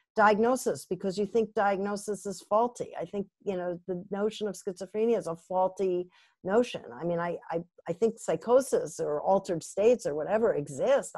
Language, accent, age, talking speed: English, American, 50-69, 170 wpm